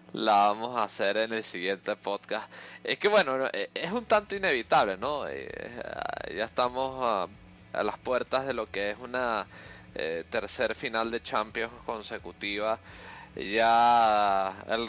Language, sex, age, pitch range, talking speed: Spanish, male, 20-39, 95-120 Hz, 140 wpm